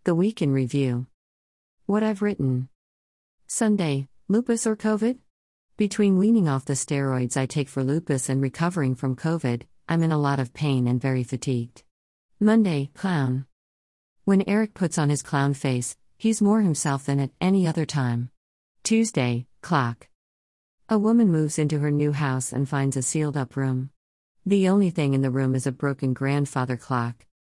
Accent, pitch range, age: American, 125-170 Hz, 50-69